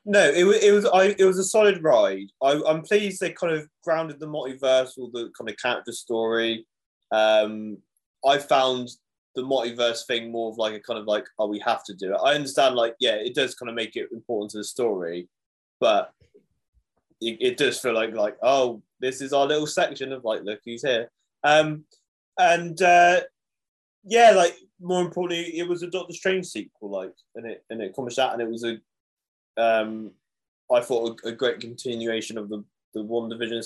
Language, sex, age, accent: English, male, 20-39, British